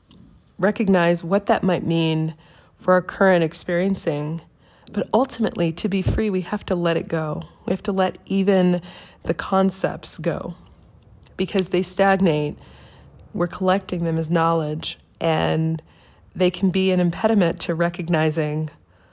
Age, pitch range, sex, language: 40-59, 160-190 Hz, female, English